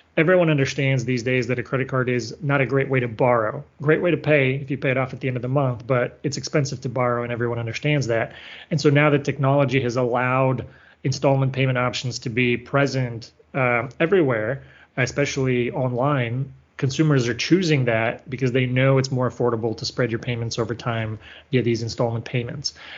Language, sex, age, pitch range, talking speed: English, male, 30-49, 120-135 Hz, 200 wpm